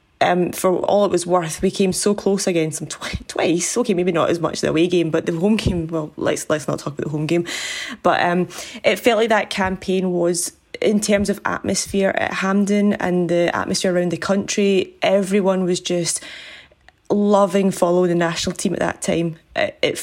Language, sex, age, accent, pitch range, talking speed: English, female, 20-39, British, 180-215 Hz, 200 wpm